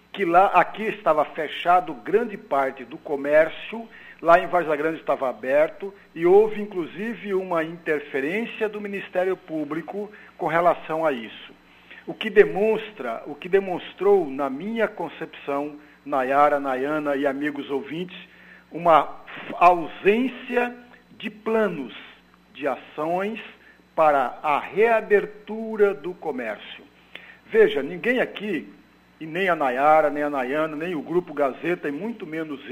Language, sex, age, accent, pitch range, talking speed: Portuguese, male, 60-79, Brazilian, 155-215 Hz, 125 wpm